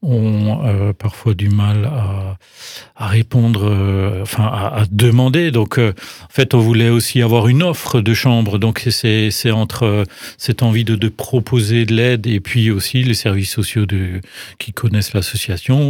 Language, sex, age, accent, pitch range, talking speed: French, male, 40-59, French, 105-120 Hz, 175 wpm